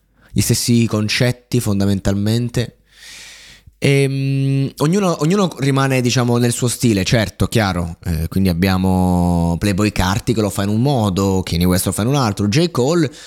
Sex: male